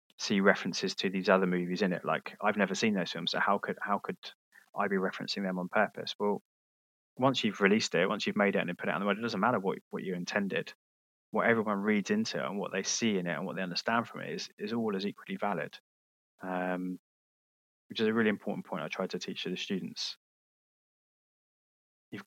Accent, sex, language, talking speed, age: British, male, English, 230 wpm, 20-39